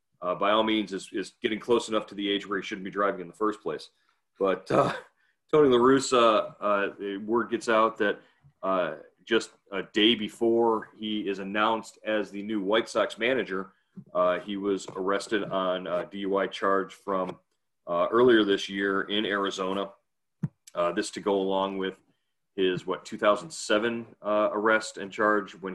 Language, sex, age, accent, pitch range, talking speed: English, male, 30-49, American, 95-110 Hz, 175 wpm